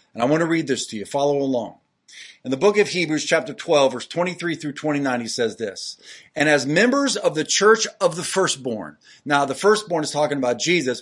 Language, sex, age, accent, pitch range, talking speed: English, male, 40-59, American, 130-180 Hz, 220 wpm